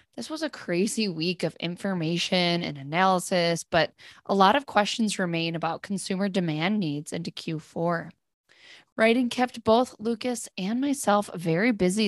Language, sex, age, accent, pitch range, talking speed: English, female, 20-39, American, 170-225 Hz, 145 wpm